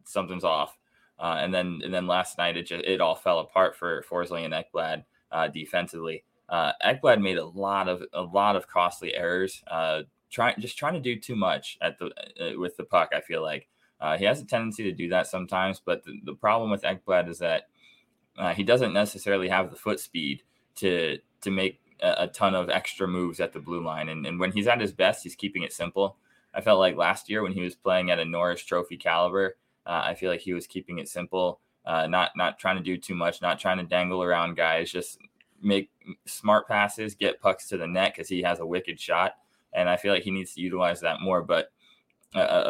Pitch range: 85-100 Hz